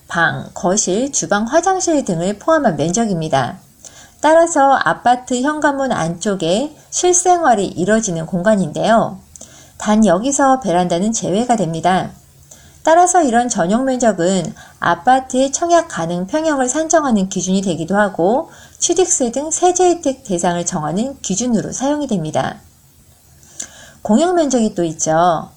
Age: 40-59